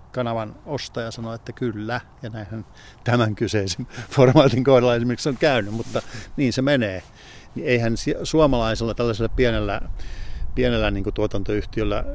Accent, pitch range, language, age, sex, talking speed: native, 100-125 Hz, Finnish, 50-69, male, 135 wpm